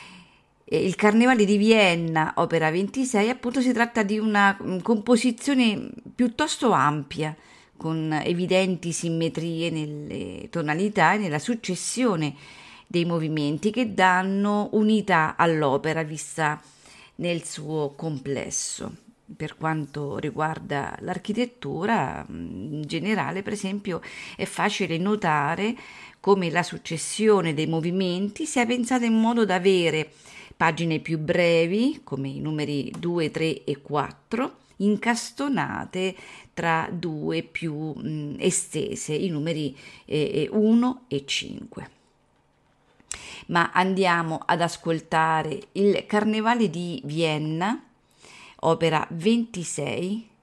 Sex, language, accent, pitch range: female, Italian, native, 155-215 Hz